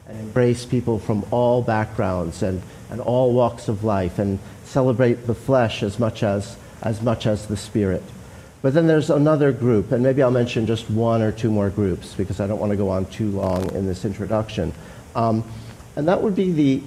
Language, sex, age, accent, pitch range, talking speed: English, male, 50-69, American, 110-140 Hz, 200 wpm